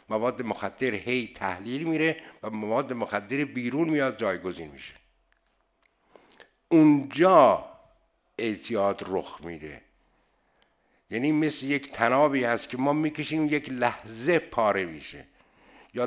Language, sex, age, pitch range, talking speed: Persian, male, 60-79, 120-155 Hz, 110 wpm